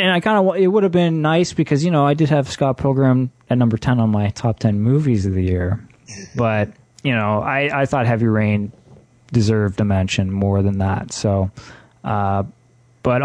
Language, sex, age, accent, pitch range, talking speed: English, male, 20-39, American, 105-130 Hz, 205 wpm